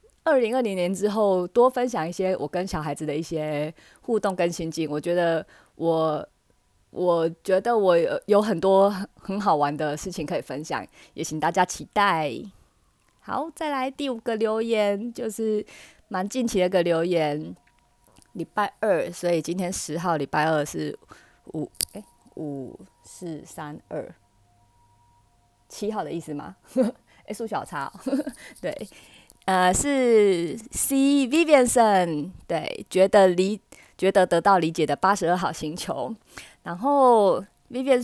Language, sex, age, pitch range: Chinese, female, 20-39, 160-225 Hz